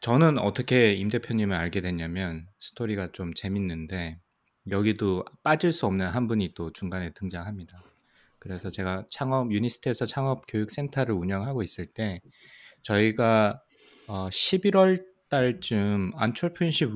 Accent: native